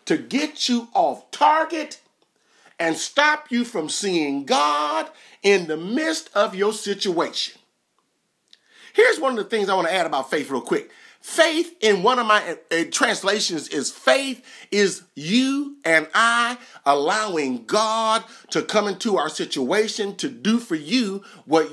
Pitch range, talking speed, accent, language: 180-255 Hz, 150 wpm, American, English